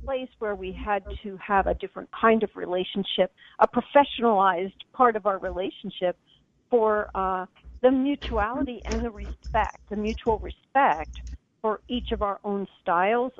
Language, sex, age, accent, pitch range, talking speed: English, female, 50-69, American, 190-235 Hz, 150 wpm